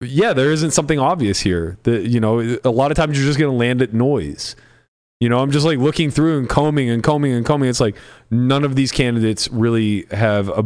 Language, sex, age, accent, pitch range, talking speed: English, male, 20-39, American, 110-145 Hz, 235 wpm